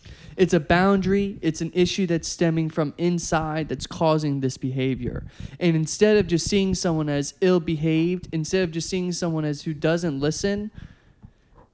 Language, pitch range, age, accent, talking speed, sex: English, 145-175 Hz, 20-39, American, 165 wpm, male